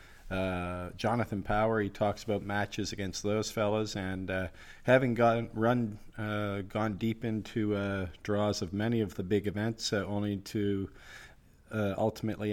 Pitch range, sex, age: 90-105 Hz, male, 40-59